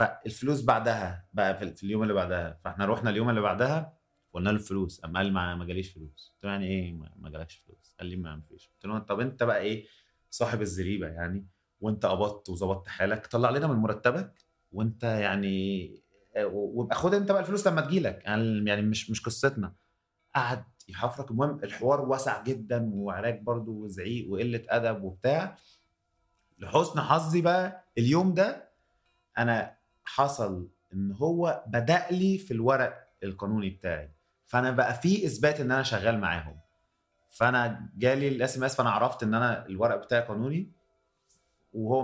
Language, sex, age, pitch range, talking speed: Arabic, male, 30-49, 95-130 Hz, 160 wpm